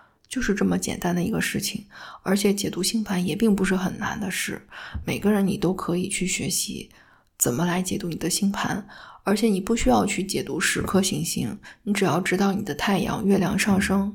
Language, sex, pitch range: Chinese, female, 185-205 Hz